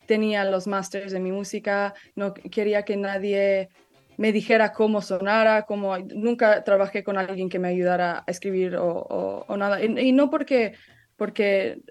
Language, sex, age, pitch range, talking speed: Spanish, female, 20-39, 190-225 Hz, 165 wpm